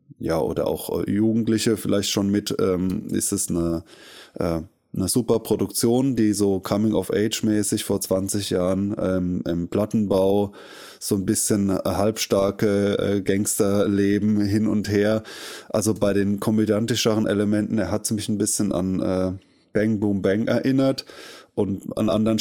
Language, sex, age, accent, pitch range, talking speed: German, male, 20-39, German, 100-120 Hz, 145 wpm